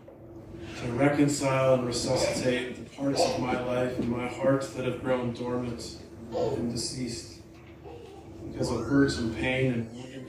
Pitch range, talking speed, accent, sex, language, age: 110-130 Hz, 140 wpm, American, male, English, 40-59